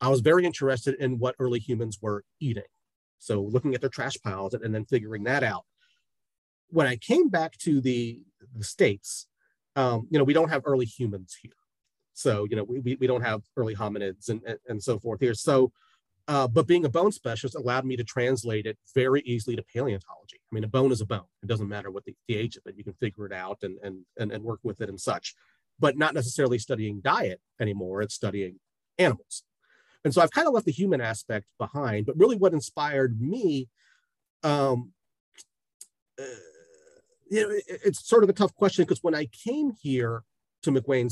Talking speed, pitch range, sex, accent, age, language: 205 wpm, 110-140 Hz, male, American, 40-59, English